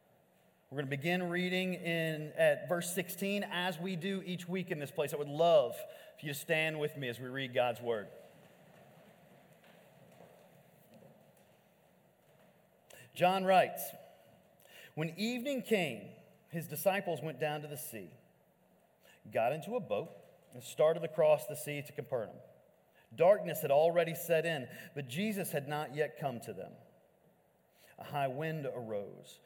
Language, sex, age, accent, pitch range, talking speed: English, male, 40-59, American, 140-175 Hz, 145 wpm